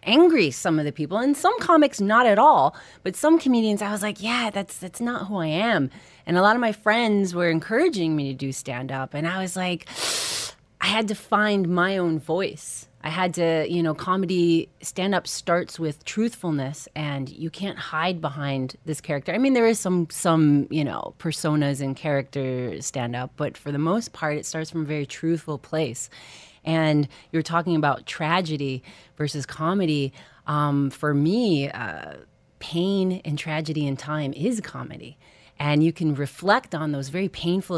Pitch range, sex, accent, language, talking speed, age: 150-190 Hz, female, American, English, 180 wpm, 30-49